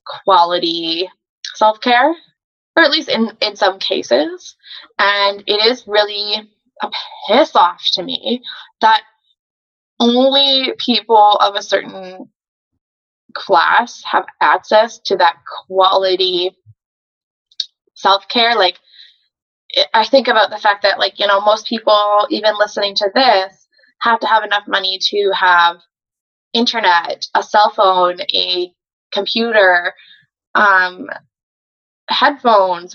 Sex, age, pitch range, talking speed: female, 20-39, 190-250 Hz, 115 wpm